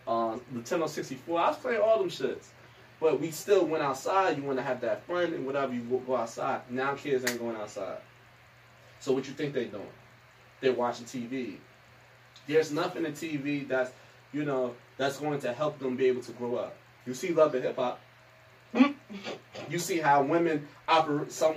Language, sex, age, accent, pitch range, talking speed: English, male, 20-39, American, 125-160 Hz, 190 wpm